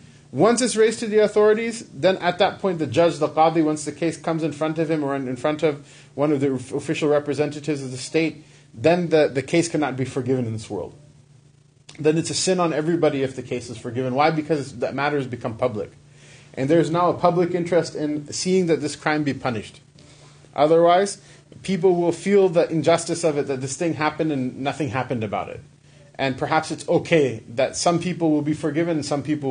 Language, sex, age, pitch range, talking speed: English, male, 30-49, 140-165 Hz, 215 wpm